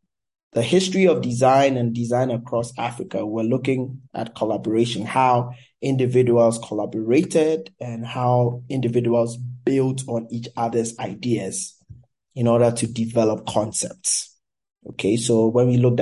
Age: 20-39